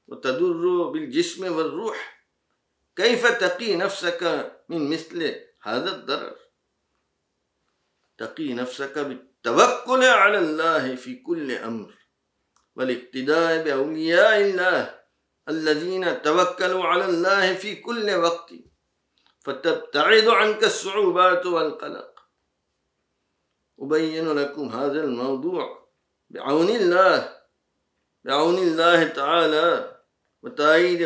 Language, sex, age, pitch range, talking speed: English, male, 50-69, 160-215 Hz, 80 wpm